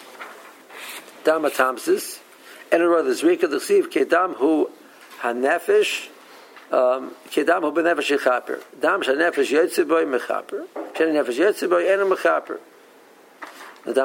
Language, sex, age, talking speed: English, male, 50-69, 125 wpm